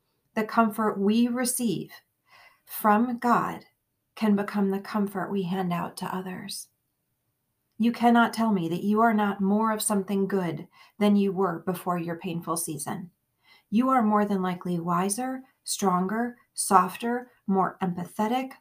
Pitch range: 185-215 Hz